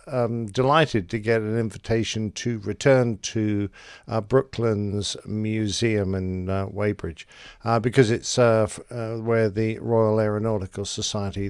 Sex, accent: male, British